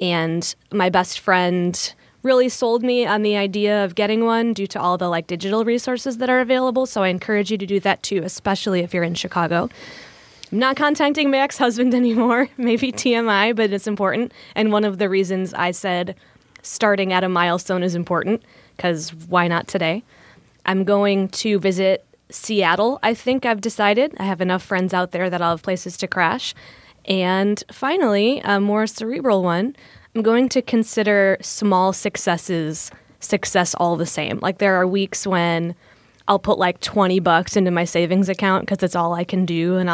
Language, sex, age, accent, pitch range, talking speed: English, female, 20-39, American, 180-230 Hz, 185 wpm